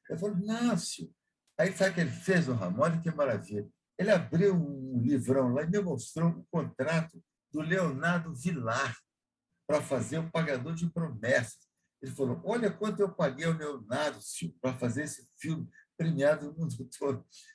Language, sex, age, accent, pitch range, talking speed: Portuguese, male, 60-79, Brazilian, 135-190 Hz, 175 wpm